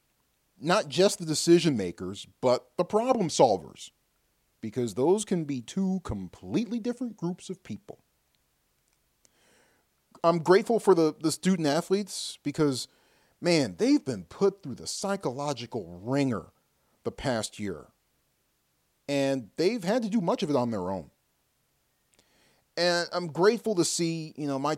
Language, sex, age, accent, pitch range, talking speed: English, male, 40-59, American, 140-225 Hz, 140 wpm